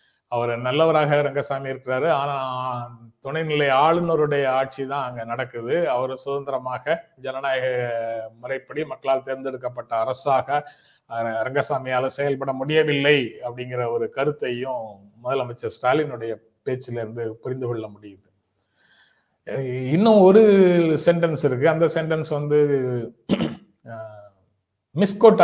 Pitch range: 120-160 Hz